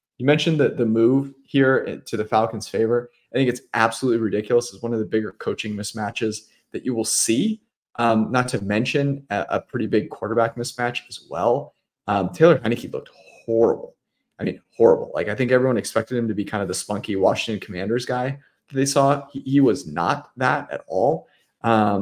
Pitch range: 105-135 Hz